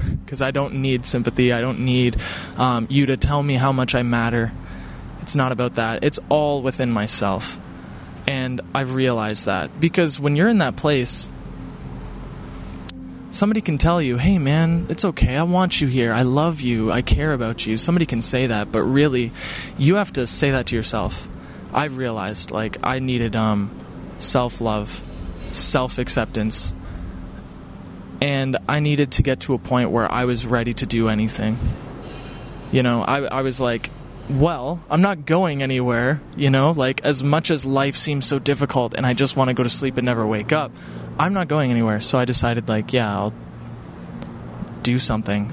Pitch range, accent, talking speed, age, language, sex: 105-140 Hz, American, 180 wpm, 20-39, English, male